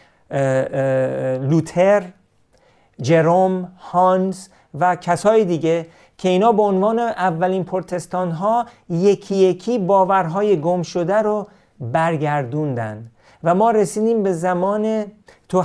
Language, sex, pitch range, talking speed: Persian, male, 160-195 Hz, 105 wpm